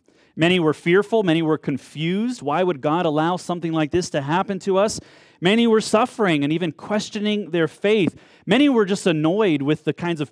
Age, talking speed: 30-49, 190 wpm